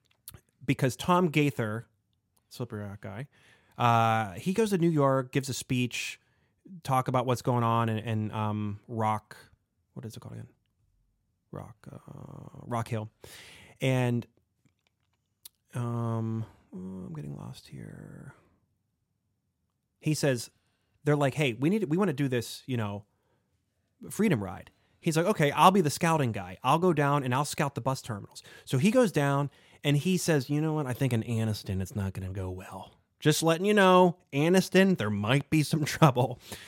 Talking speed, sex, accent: 170 wpm, male, American